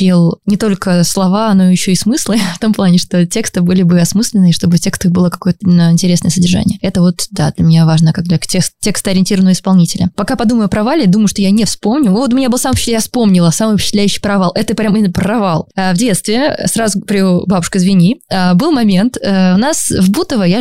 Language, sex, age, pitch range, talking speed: Russian, female, 20-39, 180-225 Hz, 205 wpm